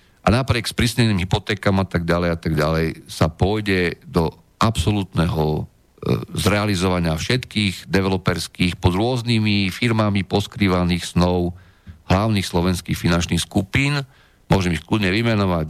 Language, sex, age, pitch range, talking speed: Slovak, male, 50-69, 90-115 Hz, 115 wpm